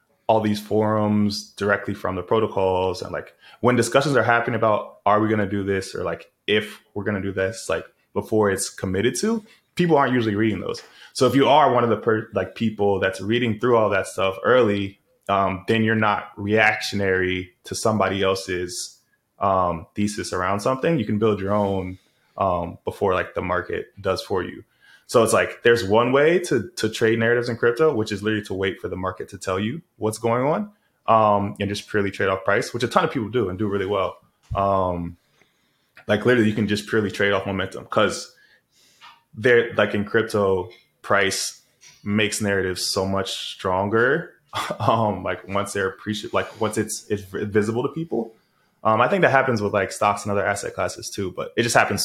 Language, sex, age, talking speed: English, male, 20-39, 200 wpm